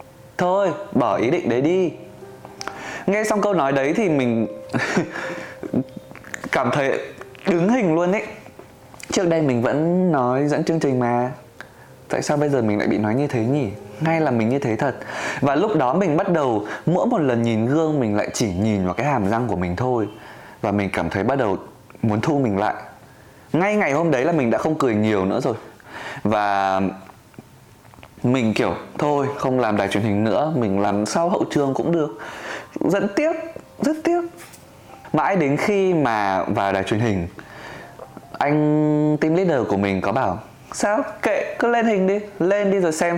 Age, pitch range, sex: 20-39, 105-165 Hz, male